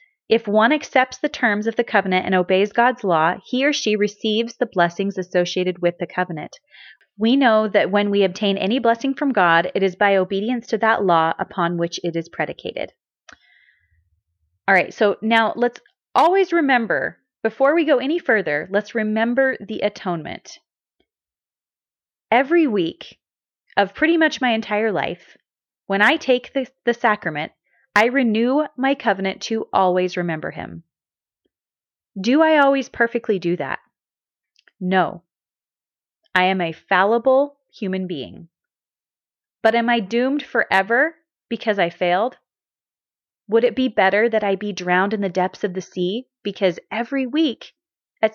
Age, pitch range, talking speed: 30-49, 190-260 Hz, 150 wpm